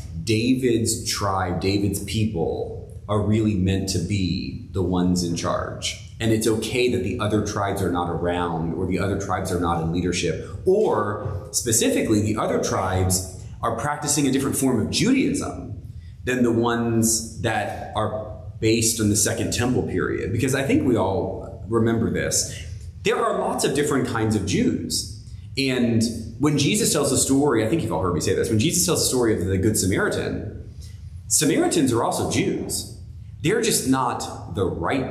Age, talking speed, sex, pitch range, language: 30-49, 175 wpm, male, 95-120 Hz, English